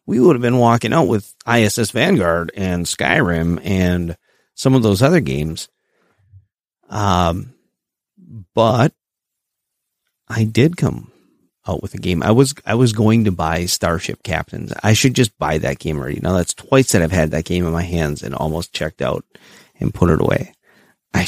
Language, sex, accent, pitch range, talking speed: English, male, American, 90-120 Hz, 175 wpm